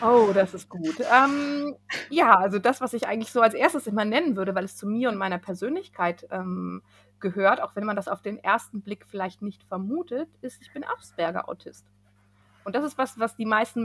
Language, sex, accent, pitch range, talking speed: German, female, German, 195-245 Hz, 210 wpm